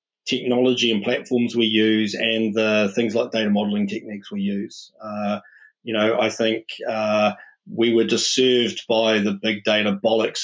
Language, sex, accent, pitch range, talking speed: English, male, Australian, 105-125 Hz, 160 wpm